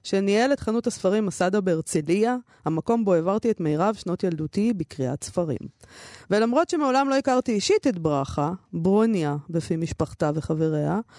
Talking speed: 140 wpm